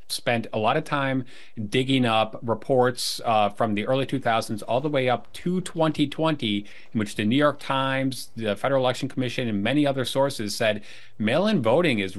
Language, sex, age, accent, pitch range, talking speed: English, male, 30-49, American, 110-145 Hz, 180 wpm